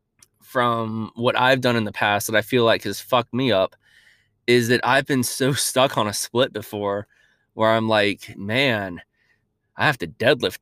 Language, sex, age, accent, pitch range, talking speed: English, male, 20-39, American, 110-140 Hz, 185 wpm